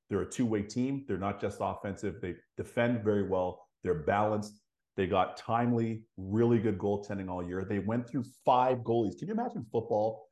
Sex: male